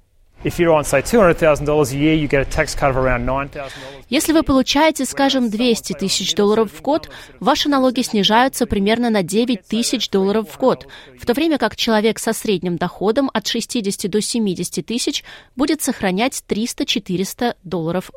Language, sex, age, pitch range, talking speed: Russian, female, 30-49, 180-245 Hz, 120 wpm